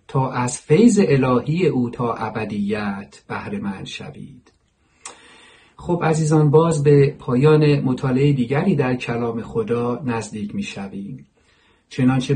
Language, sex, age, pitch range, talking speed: Persian, male, 50-69, 115-140 Hz, 115 wpm